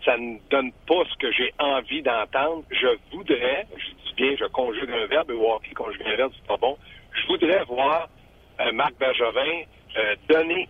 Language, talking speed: French, 190 wpm